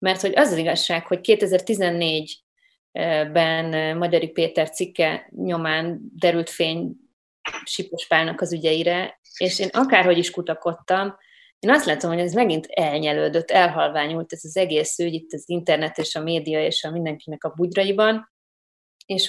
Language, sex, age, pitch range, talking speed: Hungarian, female, 30-49, 160-195 Hz, 140 wpm